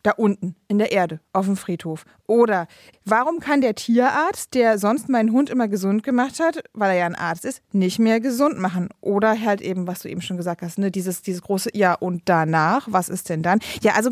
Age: 20-39